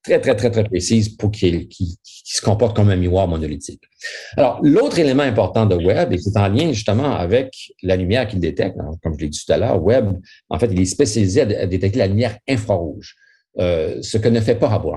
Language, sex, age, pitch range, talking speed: French, male, 50-69, 90-110 Hz, 235 wpm